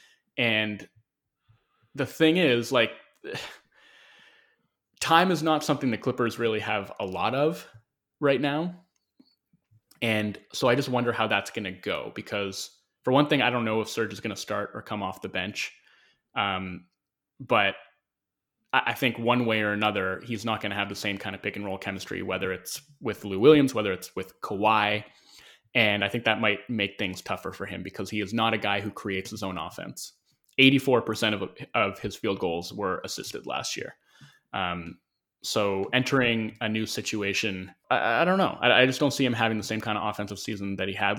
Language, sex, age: English, male, 20-39